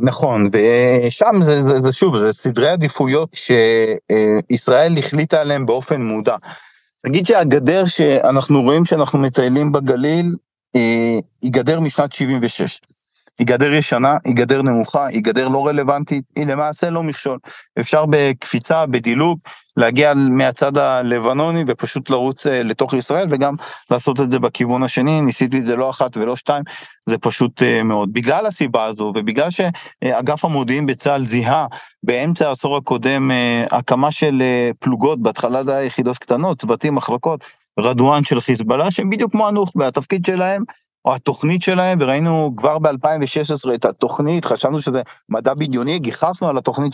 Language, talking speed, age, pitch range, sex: Hebrew, 140 wpm, 40-59, 125-155 Hz, male